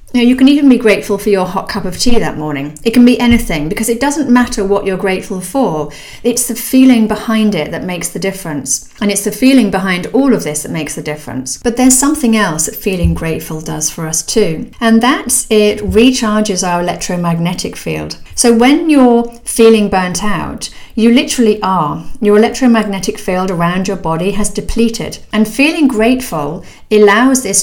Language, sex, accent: English, female, British